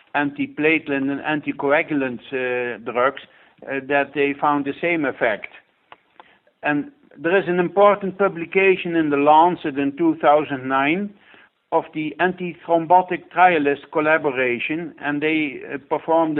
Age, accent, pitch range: 60-79, Dutch, 140-170 Hz